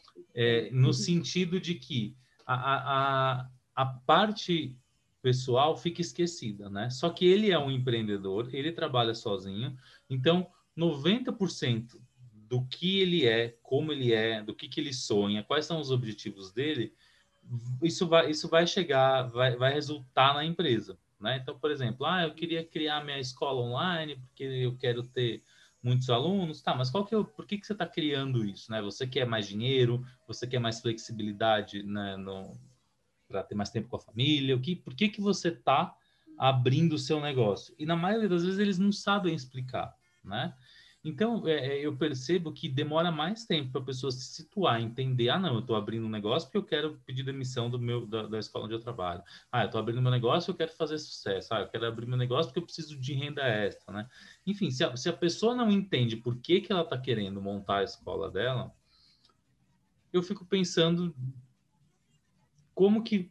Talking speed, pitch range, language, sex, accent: 185 wpm, 120-170 Hz, Portuguese, male, Brazilian